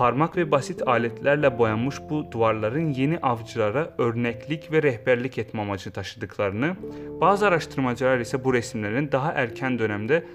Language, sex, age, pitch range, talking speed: Turkish, male, 30-49, 105-150 Hz, 135 wpm